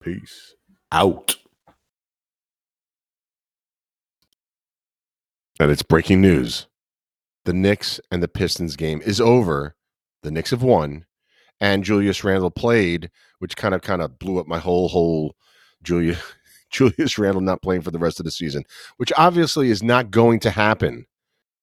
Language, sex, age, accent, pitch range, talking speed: English, male, 40-59, American, 85-130 Hz, 135 wpm